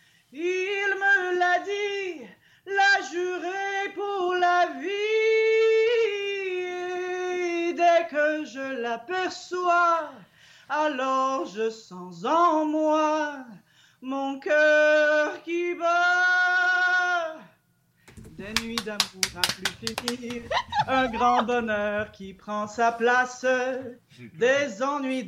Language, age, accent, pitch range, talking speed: English, 30-49, French, 255-360 Hz, 90 wpm